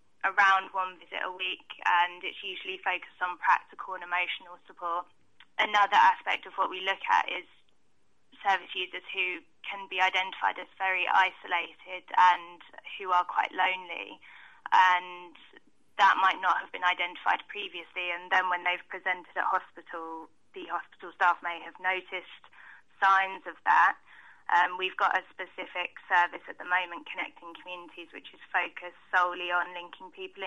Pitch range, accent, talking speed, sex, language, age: 175-190 Hz, British, 155 wpm, female, English, 10-29